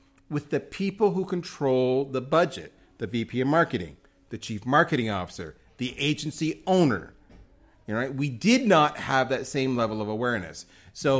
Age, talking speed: 40-59, 165 wpm